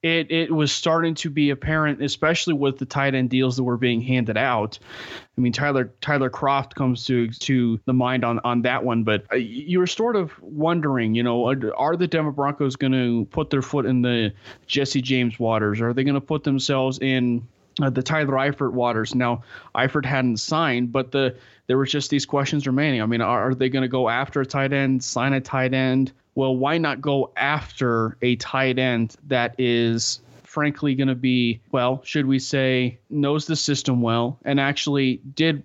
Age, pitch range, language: 30-49, 120-140 Hz, English